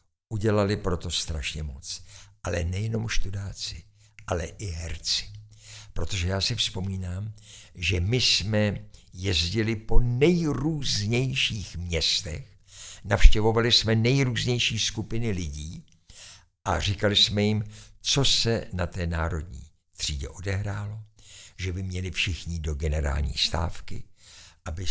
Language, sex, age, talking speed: Czech, male, 60-79, 110 wpm